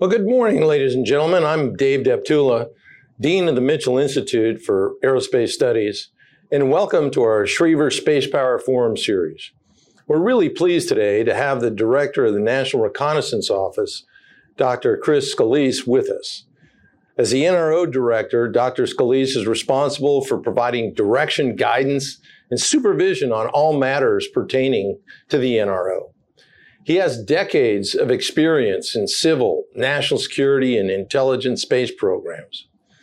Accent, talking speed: American, 140 wpm